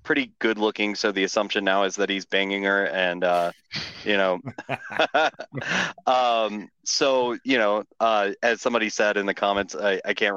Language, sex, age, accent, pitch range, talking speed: English, male, 30-49, American, 95-105 Hz, 175 wpm